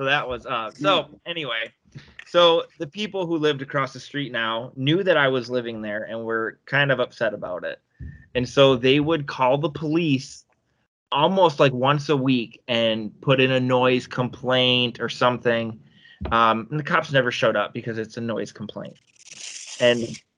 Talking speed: 180 wpm